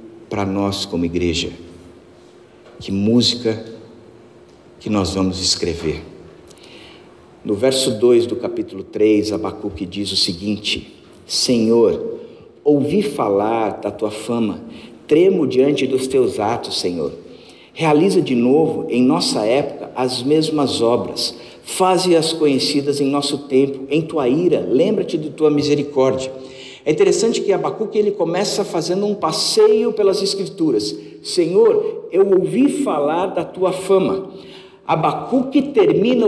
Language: Portuguese